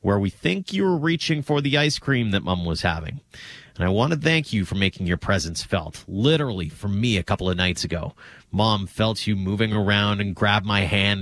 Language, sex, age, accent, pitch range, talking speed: English, male, 30-49, American, 95-125 Hz, 225 wpm